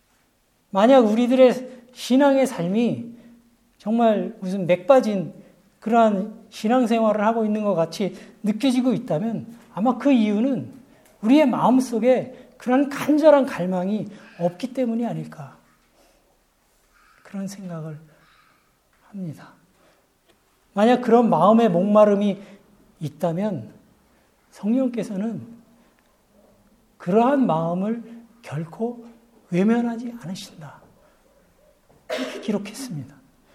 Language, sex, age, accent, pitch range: Korean, male, 40-59, native, 205-250 Hz